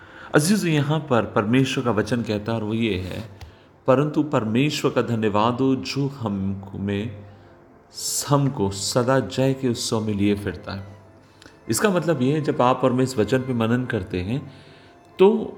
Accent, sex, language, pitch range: native, male, Hindi, 105-145 Hz